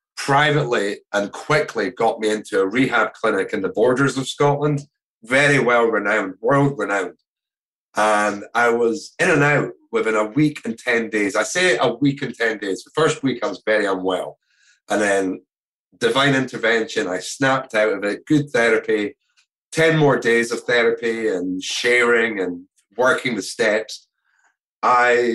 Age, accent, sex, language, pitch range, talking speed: 30-49, British, male, English, 110-155 Hz, 155 wpm